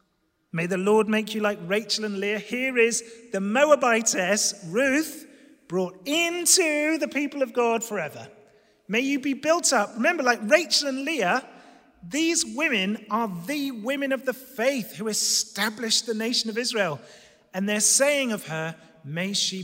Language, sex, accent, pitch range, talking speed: English, male, British, 180-250 Hz, 160 wpm